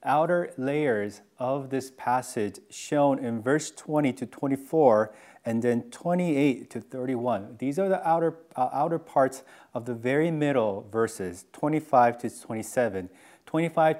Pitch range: 120-160 Hz